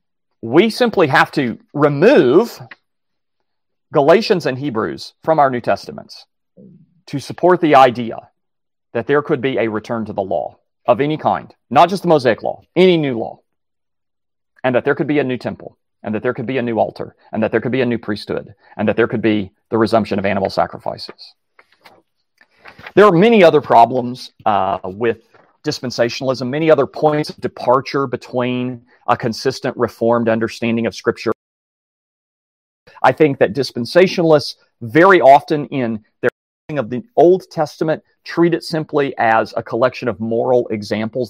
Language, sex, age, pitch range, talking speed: English, male, 40-59, 115-150 Hz, 165 wpm